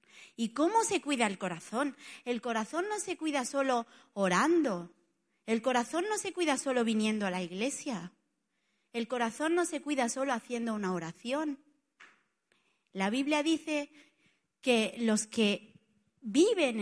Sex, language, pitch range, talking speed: female, Spanish, 195-280 Hz, 140 wpm